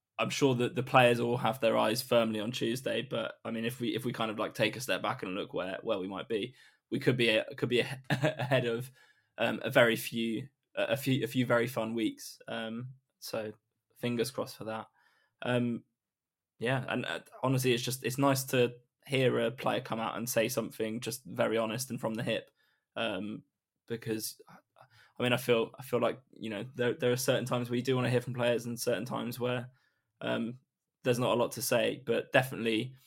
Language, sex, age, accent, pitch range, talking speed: English, male, 10-29, British, 115-130 Hz, 220 wpm